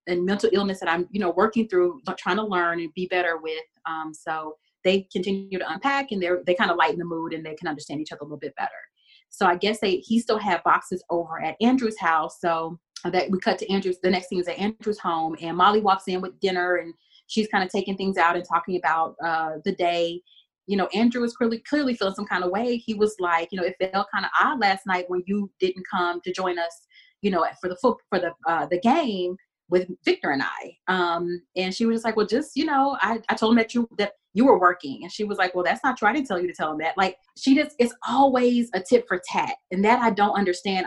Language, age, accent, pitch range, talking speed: English, 30-49, American, 180-235 Hz, 260 wpm